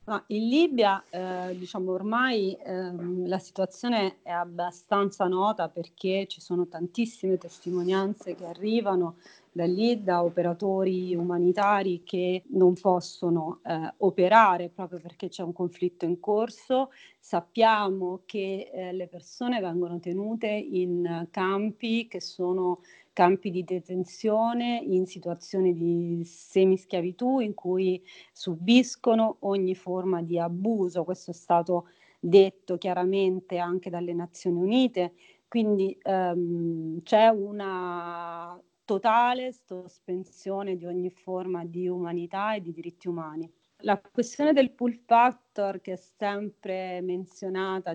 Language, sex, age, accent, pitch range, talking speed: Italian, female, 40-59, native, 175-195 Hz, 115 wpm